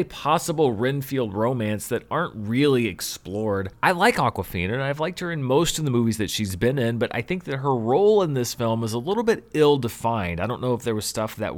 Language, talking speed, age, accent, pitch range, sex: English, 235 wpm, 30-49, American, 105-140 Hz, male